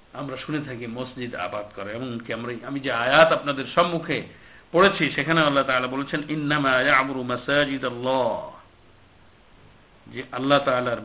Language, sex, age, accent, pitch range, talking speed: Bengali, male, 50-69, native, 120-145 Hz, 90 wpm